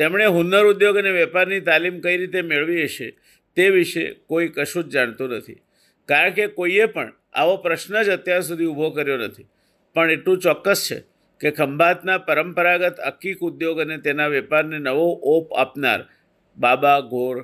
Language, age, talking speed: Gujarati, 50-69, 125 wpm